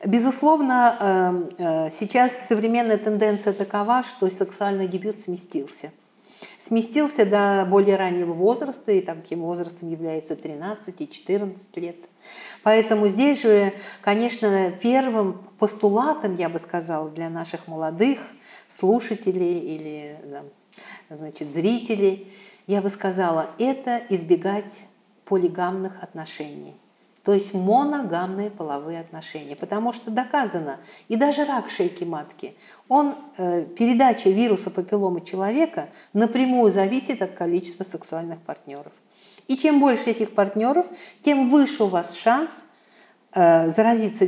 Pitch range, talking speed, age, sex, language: 175-235 Hz, 105 wpm, 50-69, female, Russian